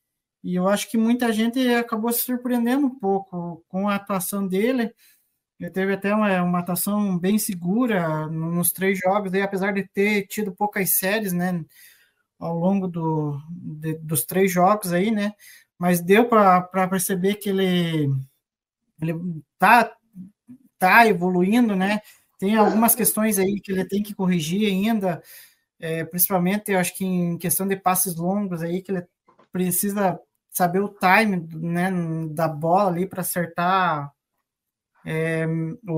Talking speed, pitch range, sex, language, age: 150 wpm, 175-210 Hz, male, Portuguese, 20-39